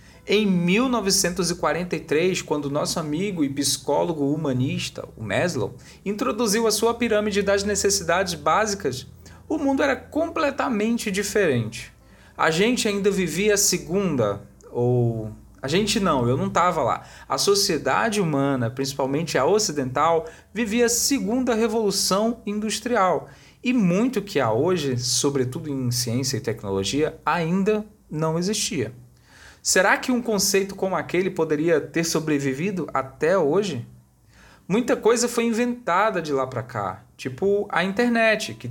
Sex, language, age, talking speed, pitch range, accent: male, Portuguese, 40-59, 130 wpm, 140-215 Hz, Brazilian